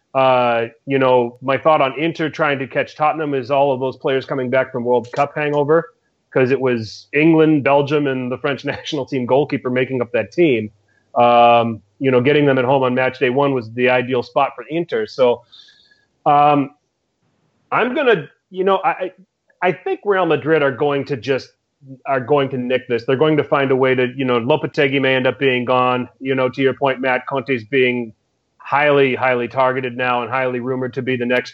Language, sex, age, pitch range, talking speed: English, male, 30-49, 125-145 Hz, 205 wpm